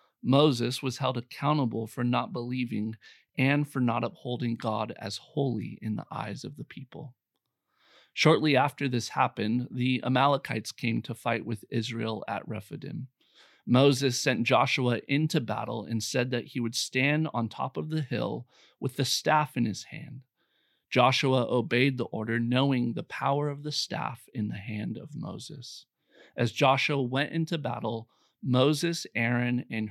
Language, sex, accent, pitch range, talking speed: English, male, American, 120-140 Hz, 155 wpm